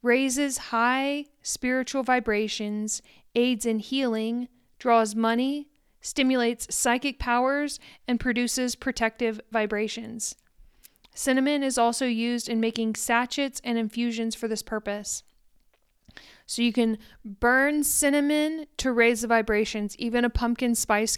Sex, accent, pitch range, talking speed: female, American, 220-245 Hz, 115 wpm